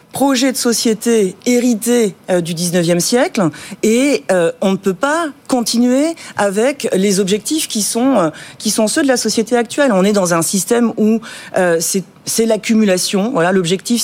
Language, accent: French, French